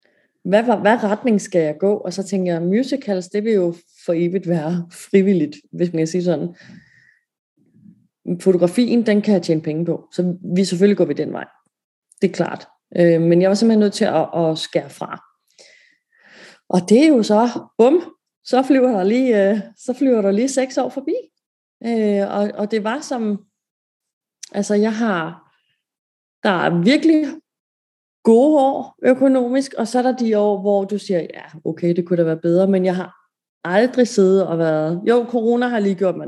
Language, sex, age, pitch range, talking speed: English, female, 30-49, 180-230 Hz, 180 wpm